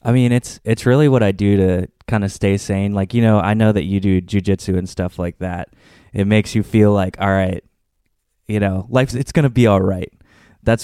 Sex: male